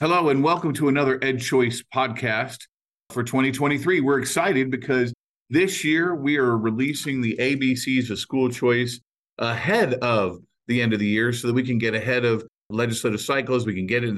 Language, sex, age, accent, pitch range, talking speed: English, male, 40-59, American, 110-130 Hz, 180 wpm